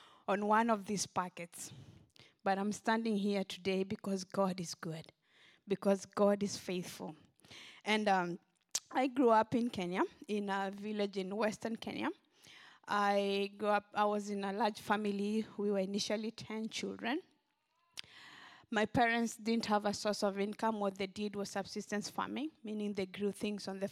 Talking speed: 165 wpm